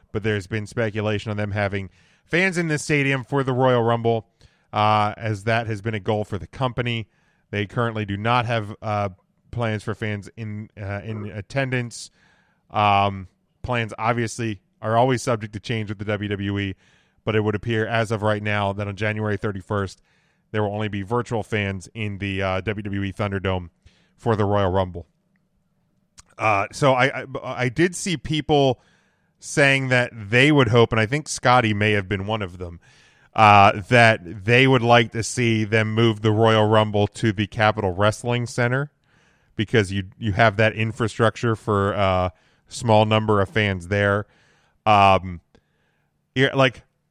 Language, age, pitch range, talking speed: English, 30-49, 105-125 Hz, 170 wpm